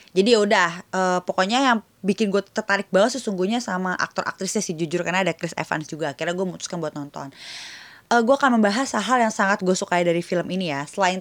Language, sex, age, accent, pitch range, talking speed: Indonesian, female, 20-39, native, 175-215 Hz, 205 wpm